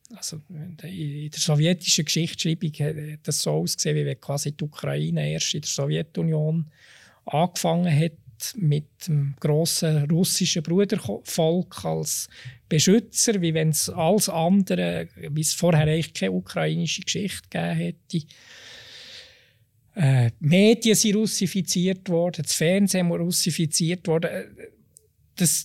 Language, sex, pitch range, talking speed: German, male, 145-180 Hz, 115 wpm